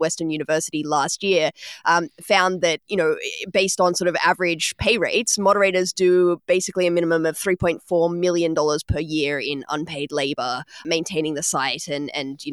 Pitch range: 170-195 Hz